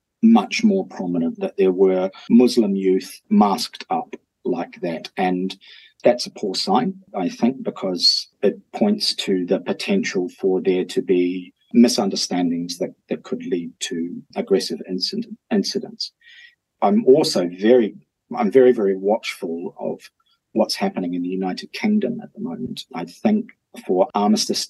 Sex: male